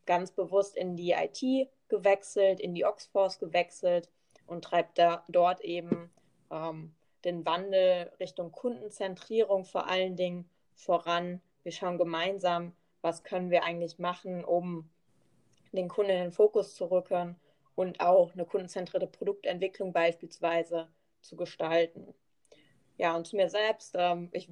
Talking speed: 135 wpm